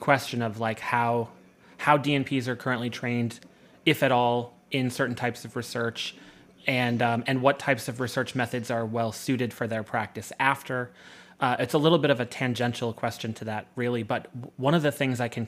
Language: English